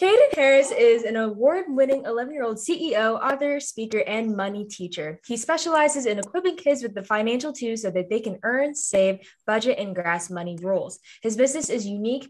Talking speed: 175 wpm